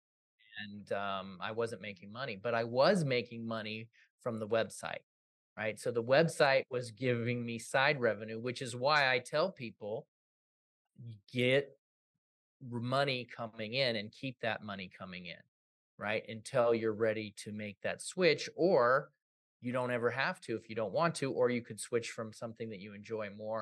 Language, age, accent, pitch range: English, 30-49, American, 110-130 Hz